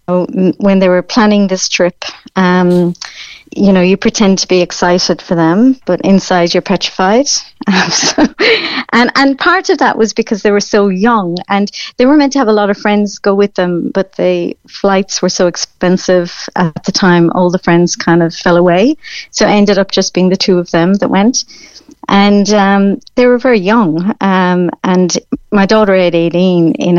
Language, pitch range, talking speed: English, 175-215 Hz, 195 wpm